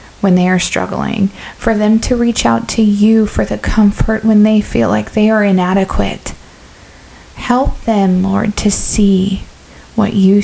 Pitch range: 170-205 Hz